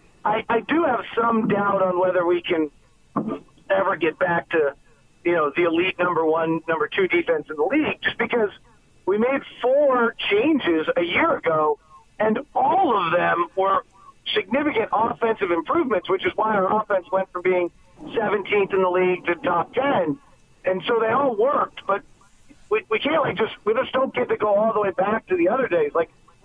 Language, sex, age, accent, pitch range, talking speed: English, male, 40-59, American, 185-240 Hz, 190 wpm